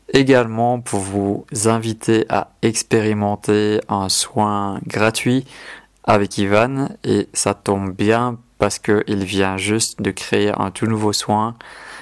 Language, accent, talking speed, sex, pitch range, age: French, French, 130 wpm, male, 100-110 Hz, 20-39